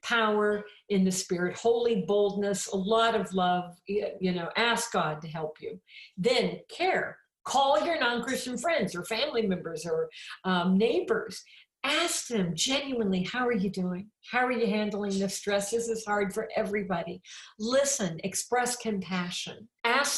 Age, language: 50-69, English